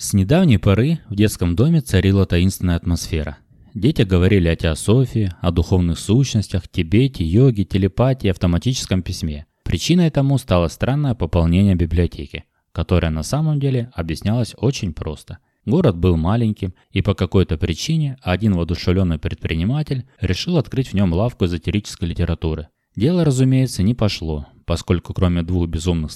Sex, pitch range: male, 85-120 Hz